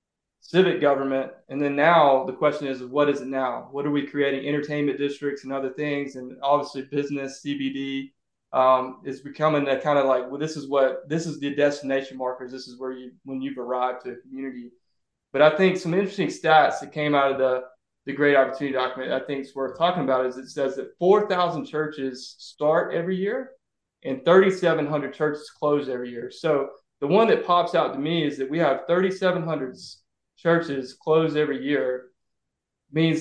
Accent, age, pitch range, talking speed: American, 20-39, 135-155 Hz, 200 wpm